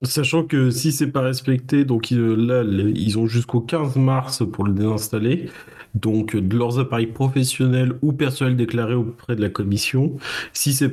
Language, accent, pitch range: French, French, 110-130 Hz